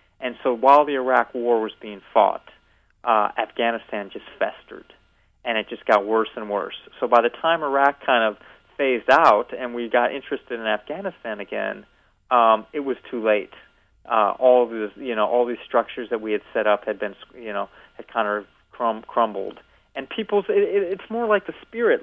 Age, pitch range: 40-59, 115-165 Hz